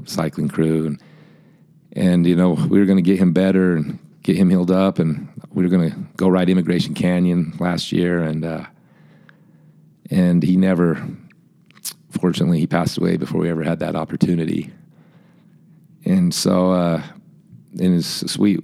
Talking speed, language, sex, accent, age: 160 wpm, English, male, American, 40-59